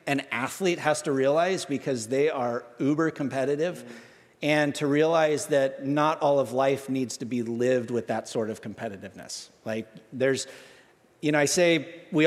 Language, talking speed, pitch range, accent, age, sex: English, 165 wpm, 130-160 Hz, American, 50-69, male